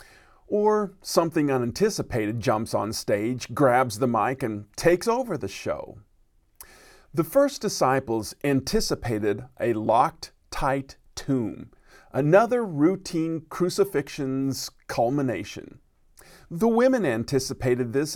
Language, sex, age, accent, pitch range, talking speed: English, male, 40-59, American, 130-190 Hz, 100 wpm